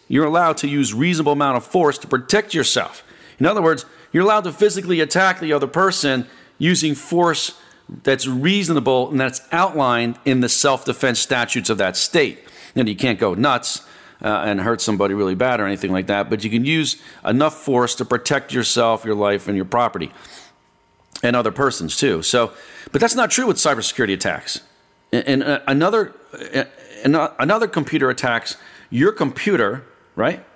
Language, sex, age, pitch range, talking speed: English, male, 40-59, 120-165 Hz, 170 wpm